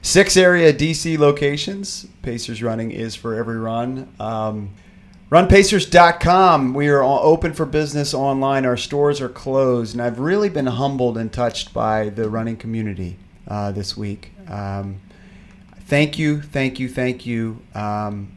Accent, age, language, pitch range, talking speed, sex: American, 30-49, English, 105-125 Hz, 145 wpm, male